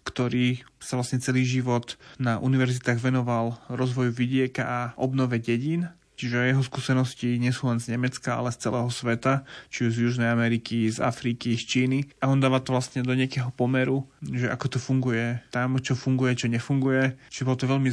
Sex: male